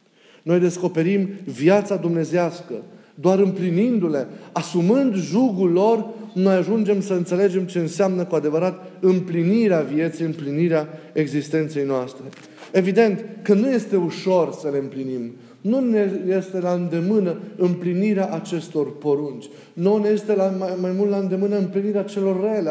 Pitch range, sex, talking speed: 170-205 Hz, male, 130 wpm